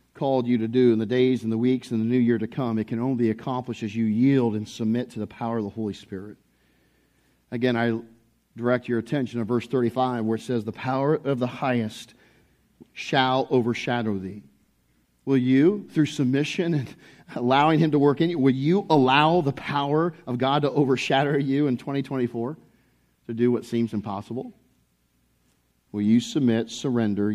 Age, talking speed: 40-59, 185 wpm